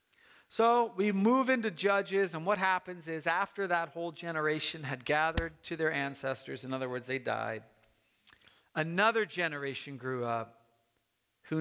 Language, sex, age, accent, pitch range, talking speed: English, male, 50-69, American, 125-175 Hz, 145 wpm